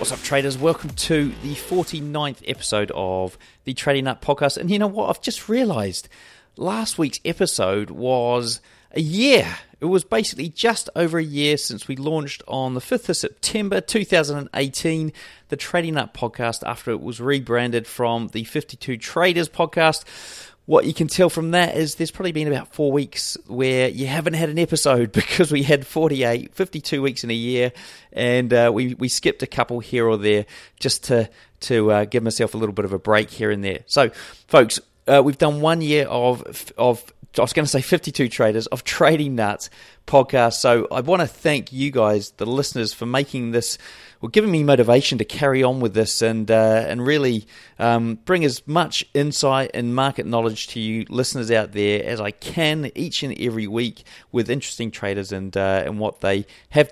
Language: English